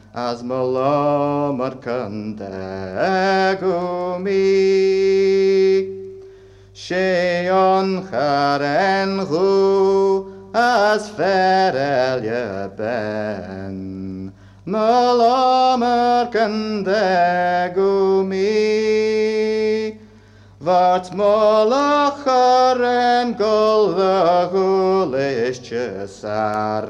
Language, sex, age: English, male, 50-69